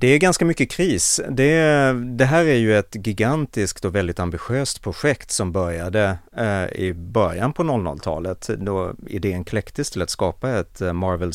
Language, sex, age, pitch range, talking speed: English, male, 30-49, 90-120 Hz, 160 wpm